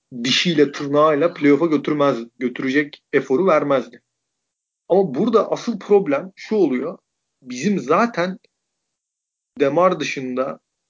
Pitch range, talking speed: 140-185 Hz, 90 wpm